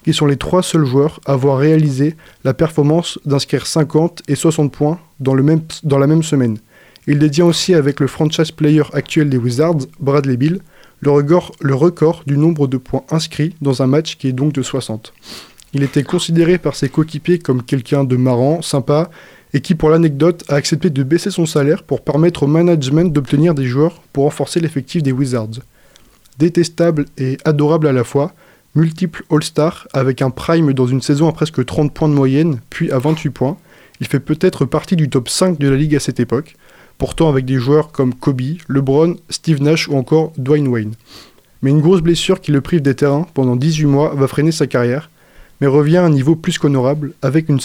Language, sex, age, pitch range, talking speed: French, male, 20-39, 135-165 Hz, 200 wpm